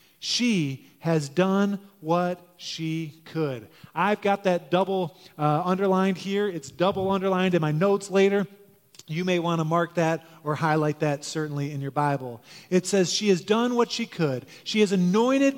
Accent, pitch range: American, 140-195 Hz